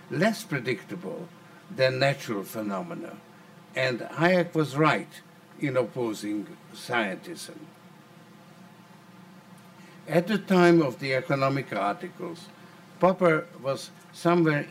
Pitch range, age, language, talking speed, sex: 140-175 Hz, 60-79, English, 90 wpm, male